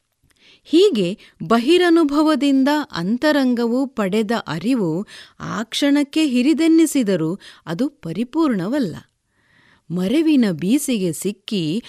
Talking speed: 65 wpm